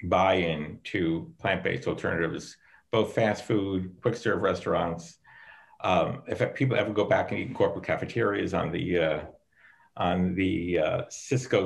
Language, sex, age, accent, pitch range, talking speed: English, male, 50-69, American, 95-125 Hz, 145 wpm